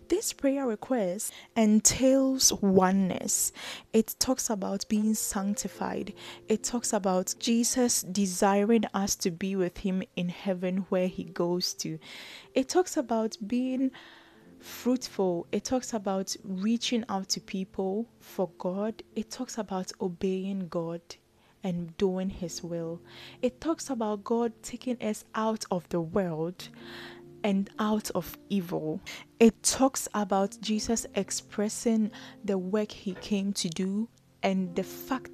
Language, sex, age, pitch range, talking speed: English, female, 10-29, 190-230 Hz, 130 wpm